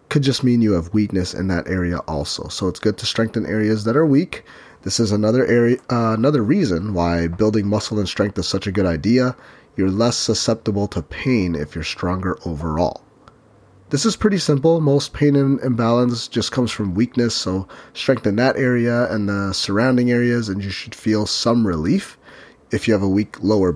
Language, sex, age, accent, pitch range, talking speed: English, male, 30-49, American, 95-125 Hz, 195 wpm